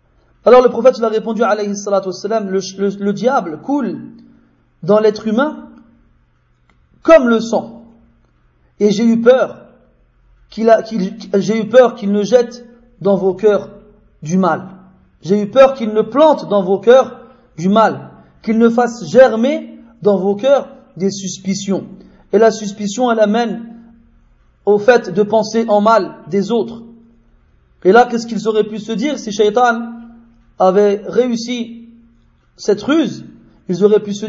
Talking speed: 150 wpm